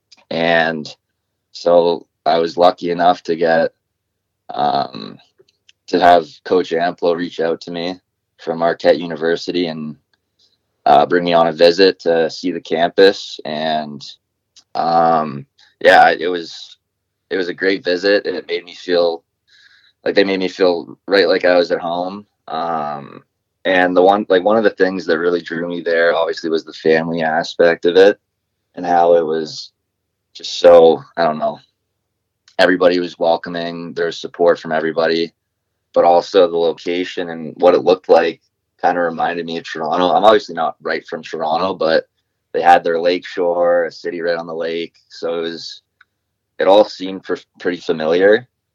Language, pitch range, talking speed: English, 85-100 Hz, 165 wpm